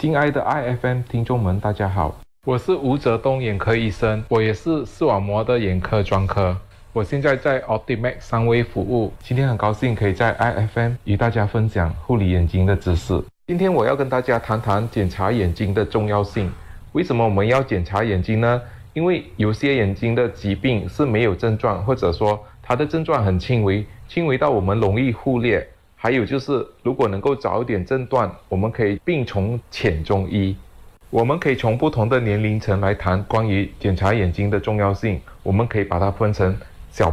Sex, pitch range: male, 100-120 Hz